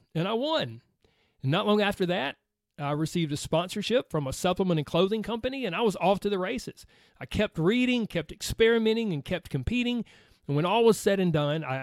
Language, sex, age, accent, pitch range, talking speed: English, male, 30-49, American, 145-195 Hz, 210 wpm